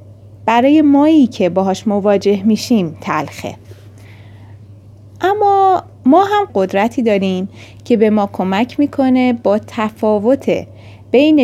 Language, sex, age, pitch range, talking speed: Arabic, female, 30-49, 155-255 Hz, 105 wpm